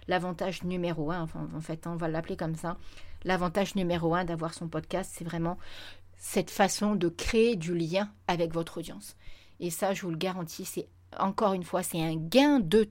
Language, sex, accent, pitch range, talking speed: French, female, French, 165-205 Hz, 190 wpm